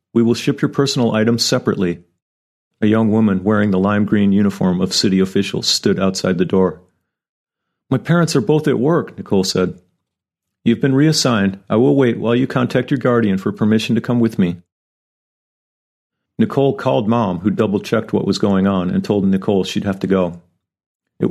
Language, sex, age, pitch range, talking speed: English, male, 40-59, 95-115 Hz, 180 wpm